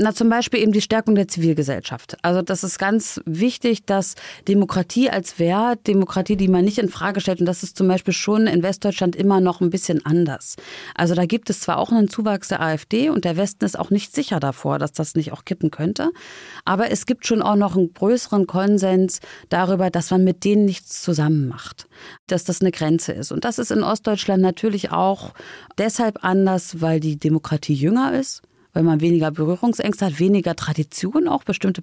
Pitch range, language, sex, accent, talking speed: 170-205 Hz, German, female, German, 200 wpm